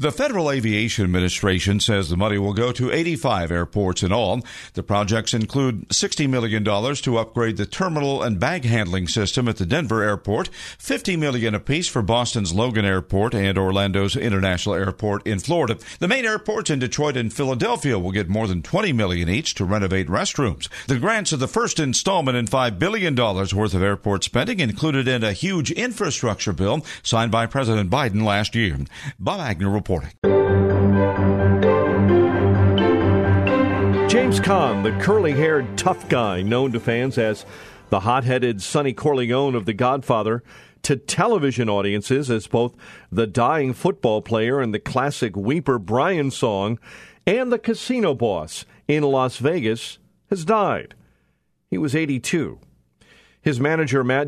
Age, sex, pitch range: 50-69, male, 100-135 Hz